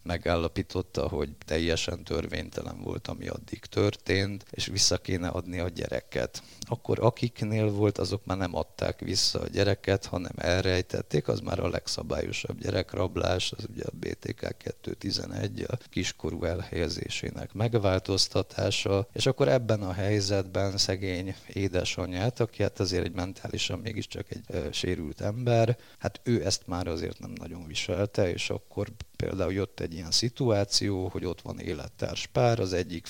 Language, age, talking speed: Hungarian, 50-69, 140 wpm